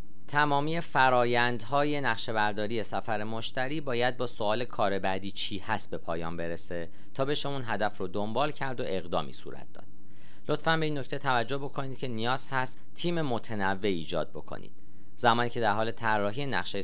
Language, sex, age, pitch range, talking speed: Persian, male, 40-59, 100-135 Hz, 160 wpm